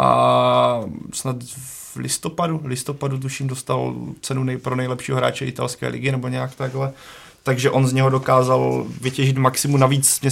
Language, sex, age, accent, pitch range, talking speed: Czech, male, 20-39, native, 125-135 Hz, 150 wpm